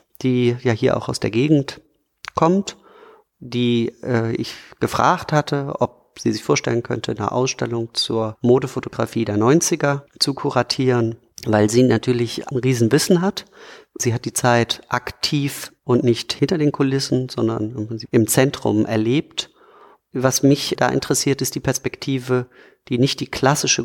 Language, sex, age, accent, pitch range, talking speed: German, male, 40-59, German, 115-135 Hz, 145 wpm